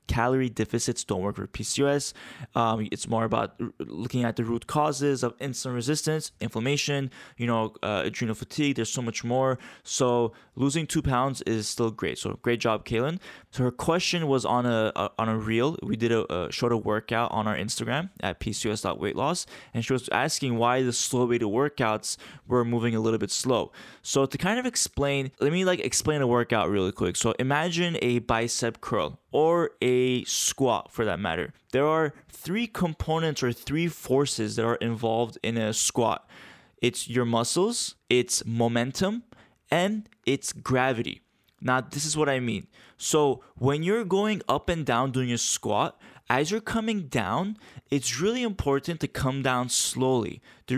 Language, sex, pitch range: English, male, 115-145 Hz